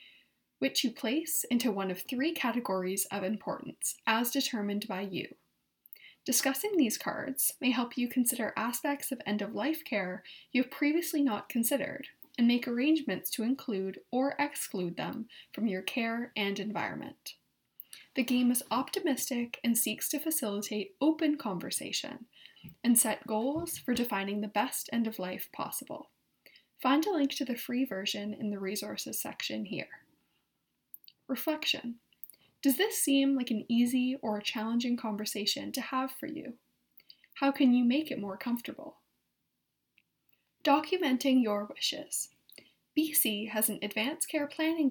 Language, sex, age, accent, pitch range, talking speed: English, female, 20-39, American, 215-285 Hz, 140 wpm